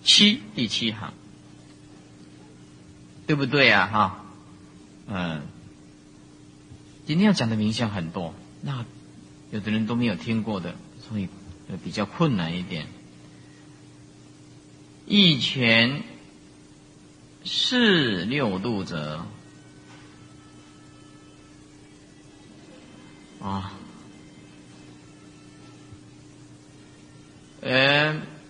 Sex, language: male, Chinese